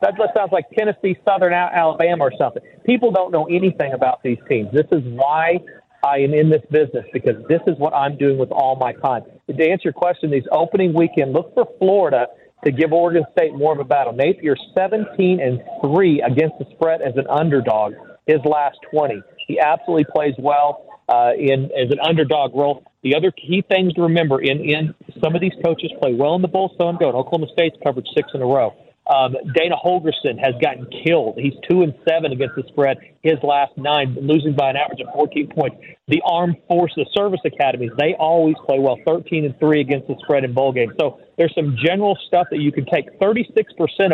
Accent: American